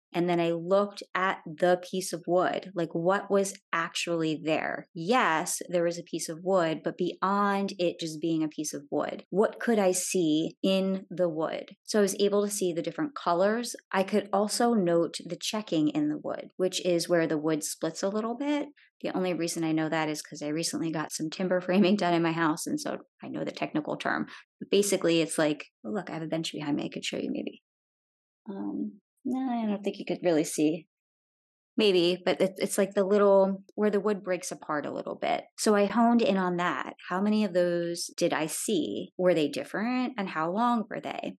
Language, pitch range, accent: English, 160-200 Hz, American